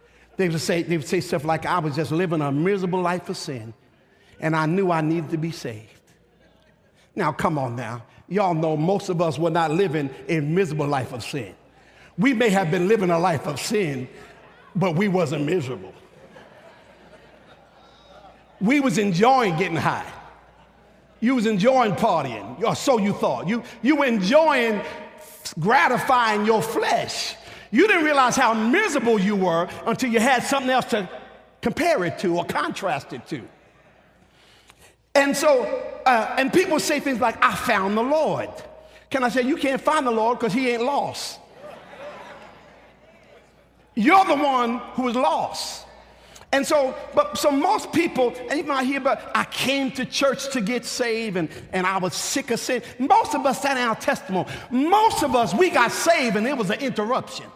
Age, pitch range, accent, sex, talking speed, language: 50-69, 170-265 Hz, American, male, 175 wpm, English